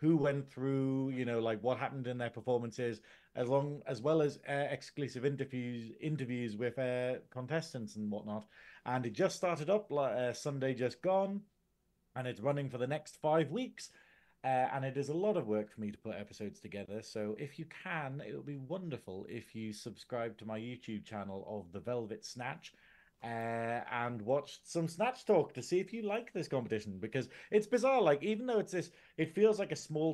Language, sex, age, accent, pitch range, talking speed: English, male, 30-49, British, 120-165 Hz, 200 wpm